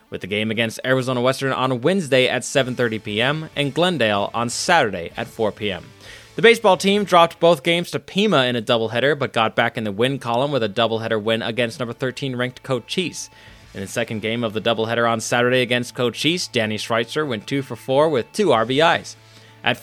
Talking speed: 205 wpm